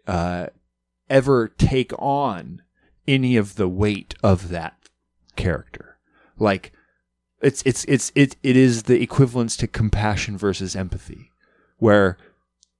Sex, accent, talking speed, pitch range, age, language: male, American, 115 wpm, 95-125 Hz, 30-49, English